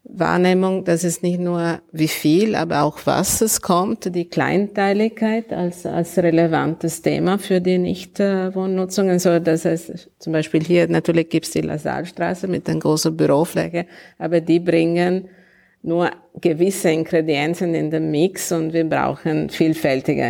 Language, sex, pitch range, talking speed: German, female, 150-175 Hz, 150 wpm